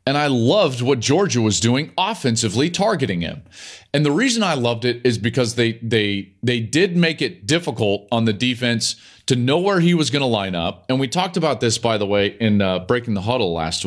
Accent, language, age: American, English, 40-59